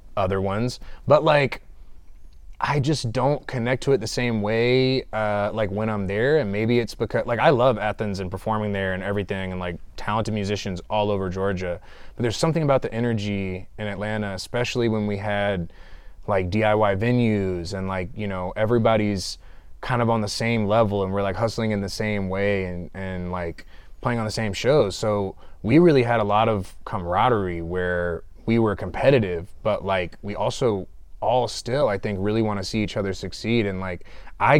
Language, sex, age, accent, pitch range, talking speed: English, male, 20-39, American, 95-115 Hz, 190 wpm